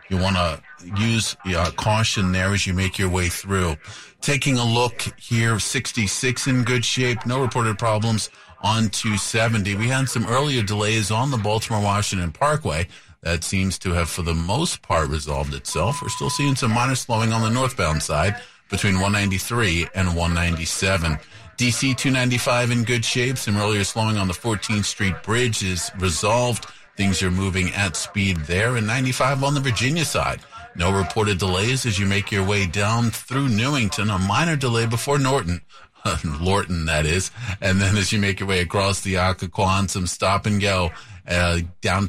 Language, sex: English, male